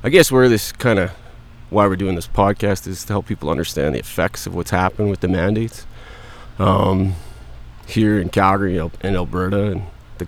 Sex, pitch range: male, 85-105 Hz